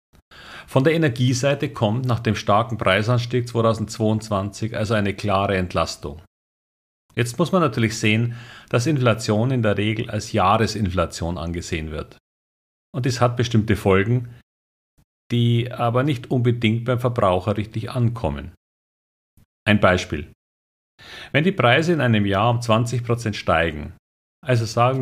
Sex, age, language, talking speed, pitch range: male, 50-69, German, 125 wpm, 95-120 Hz